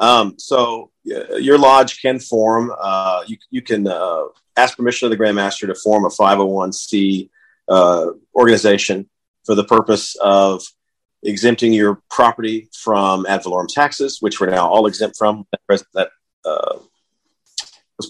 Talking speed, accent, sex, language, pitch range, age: 145 wpm, American, male, English, 100-120 Hz, 40-59